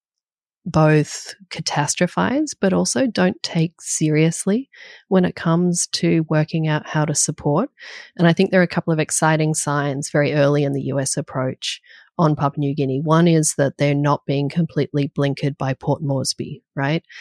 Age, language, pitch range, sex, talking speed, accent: 30-49, English, 150-175 Hz, female, 165 wpm, Australian